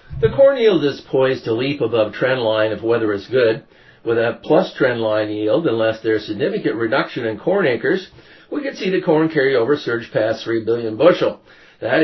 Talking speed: 200 wpm